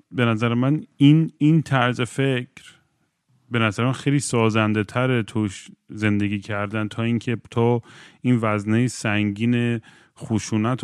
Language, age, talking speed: Persian, 40-59, 125 wpm